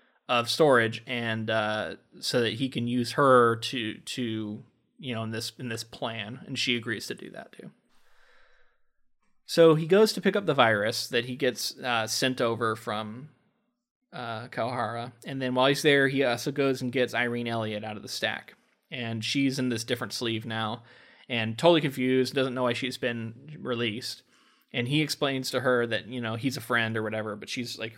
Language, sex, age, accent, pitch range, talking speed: English, male, 20-39, American, 115-140 Hz, 195 wpm